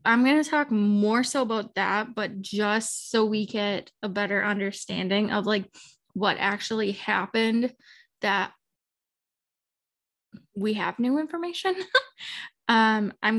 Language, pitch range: English, 200-230 Hz